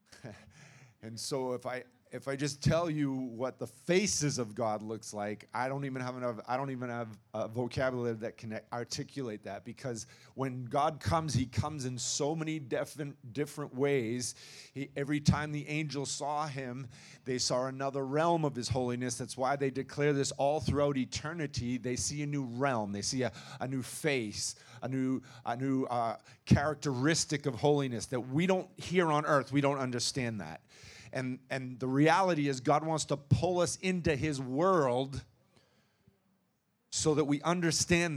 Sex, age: male, 40-59